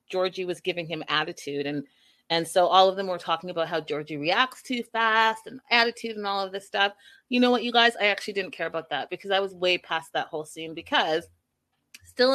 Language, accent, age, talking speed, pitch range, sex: English, American, 30-49, 230 wpm, 165-210 Hz, female